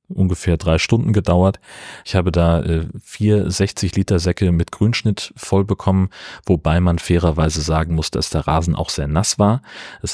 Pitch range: 80-95 Hz